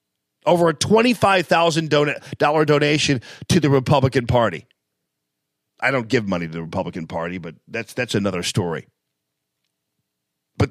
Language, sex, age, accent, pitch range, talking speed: English, male, 40-59, American, 120-165 Hz, 140 wpm